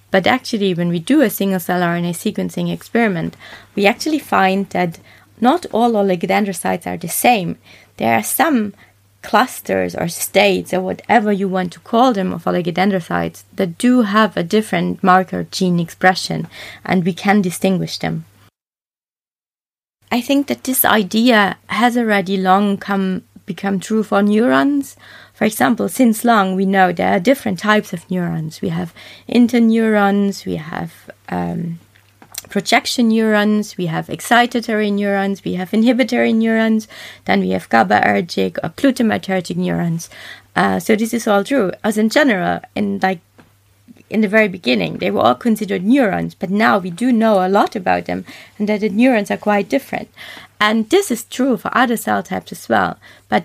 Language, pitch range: English, 175-225 Hz